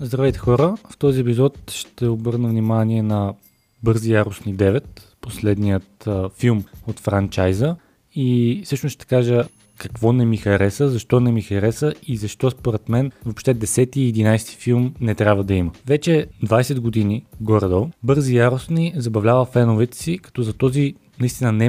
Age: 20-39